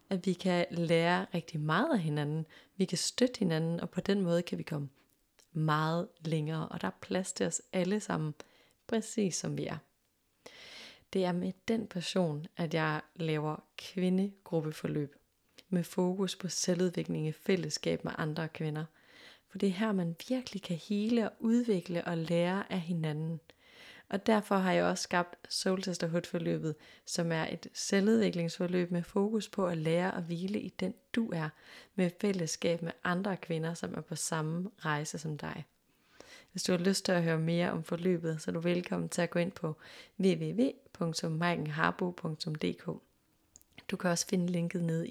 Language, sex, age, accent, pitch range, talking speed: Danish, female, 30-49, native, 165-195 Hz, 170 wpm